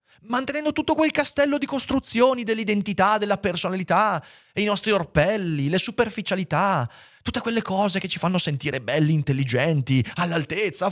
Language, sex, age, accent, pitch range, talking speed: Italian, male, 30-49, native, 120-190 Hz, 135 wpm